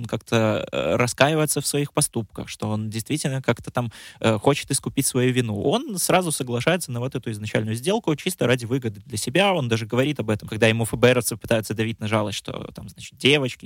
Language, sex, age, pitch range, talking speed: Russian, male, 20-39, 110-135 Hz, 200 wpm